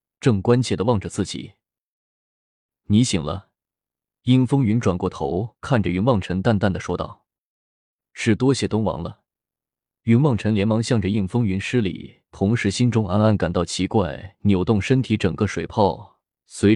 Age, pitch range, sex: 20-39, 95-120 Hz, male